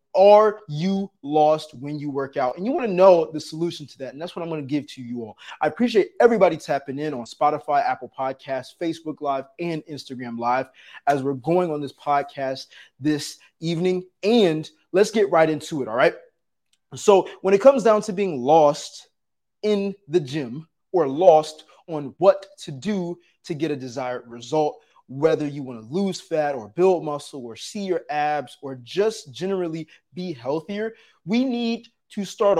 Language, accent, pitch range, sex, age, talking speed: English, American, 145-195 Hz, male, 20-39, 185 wpm